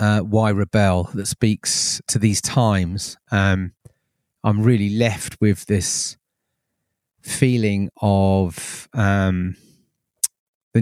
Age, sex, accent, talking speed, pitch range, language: 30-49, male, British, 100 wpm, 100-125 Hz, English